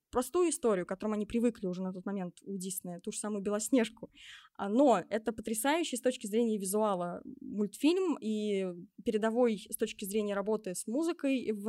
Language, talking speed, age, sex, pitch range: Russian, 170 wpm, 20-39, female, 200-255 Hz